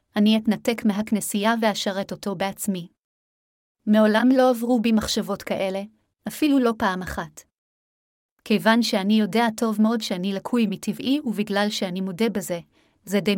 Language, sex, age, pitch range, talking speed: Hebrew, female, 30-49, 195-230 Hz, 135 wpm